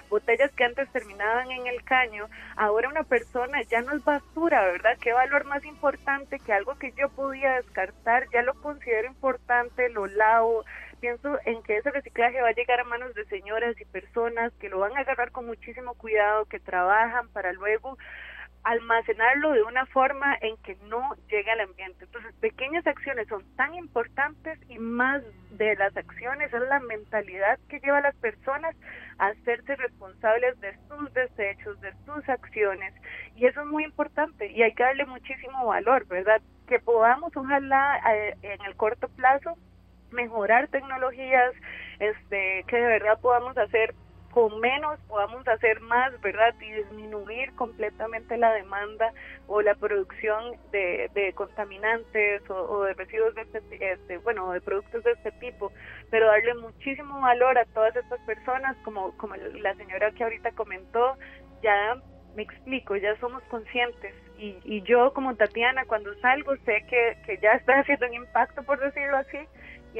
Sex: female